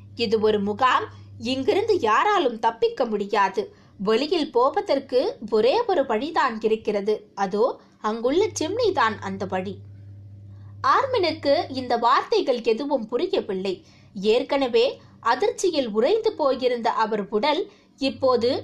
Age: 20-39